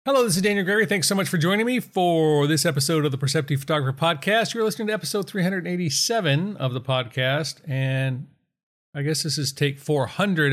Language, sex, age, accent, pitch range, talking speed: English, male, 40-59, American, 130-180 Hz, 195 wpm